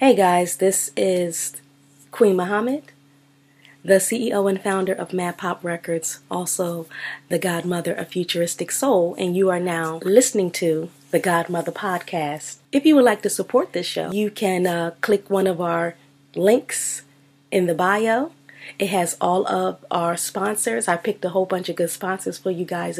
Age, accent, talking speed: 30-49, American, 170 wpm